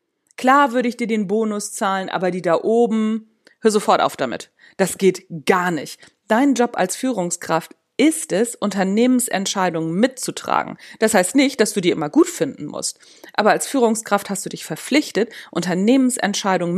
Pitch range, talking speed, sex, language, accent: 195-255 Hz, 160 wpm, female, German, German